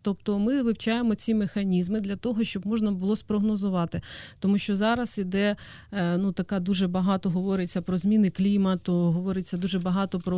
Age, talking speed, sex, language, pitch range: 30-49, 155 wpm, female, Ukrainian, 180-210 Hz